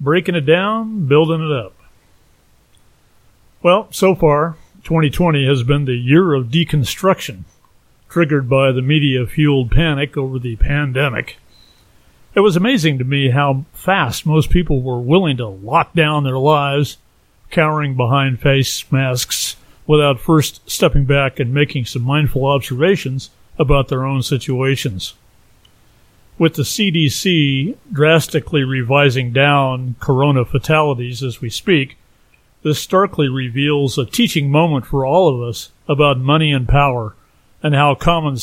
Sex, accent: male, American